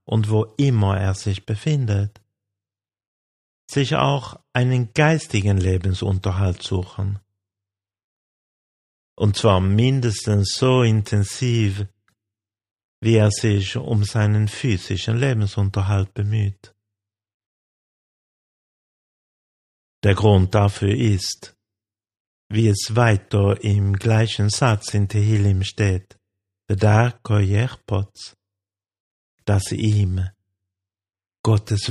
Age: 50-69